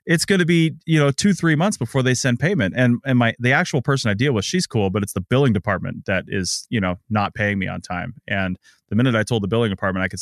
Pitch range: 100-125 Hz